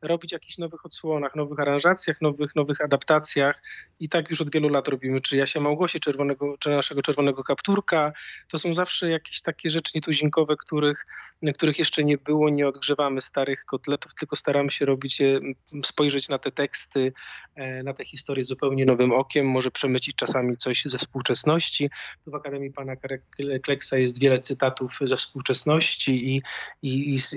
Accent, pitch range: native, 130-145 Hz